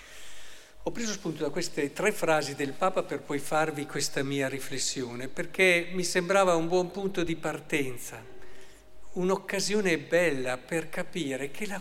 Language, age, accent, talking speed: Italian, 50-69, native, 145 wpm